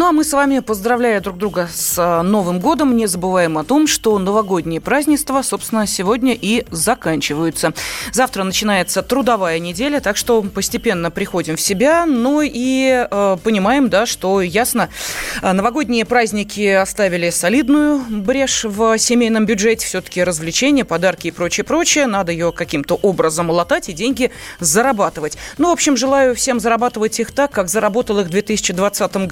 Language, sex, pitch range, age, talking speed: Russian, female, 180-245 Hz, 30-49, 150 wpm